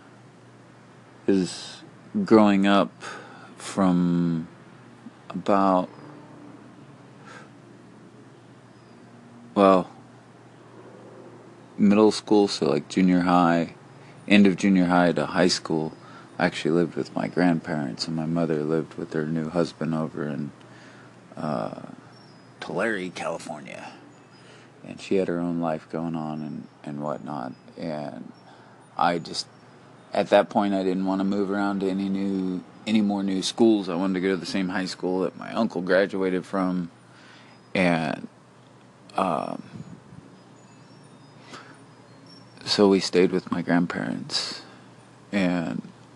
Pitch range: 85-100 Hz